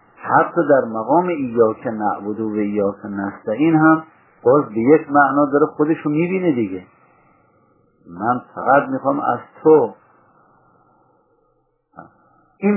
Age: 50-69